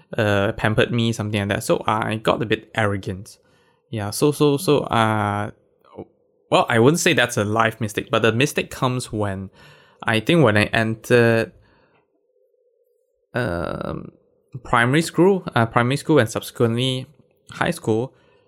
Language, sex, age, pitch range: English, male, 20-39, 110-165 Hz